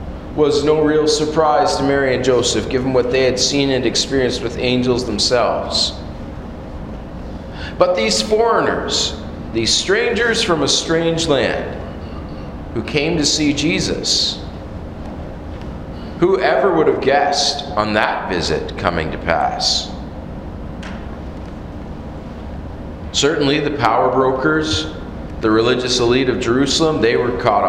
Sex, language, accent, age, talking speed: male, English, American, 40-59, 115 wpm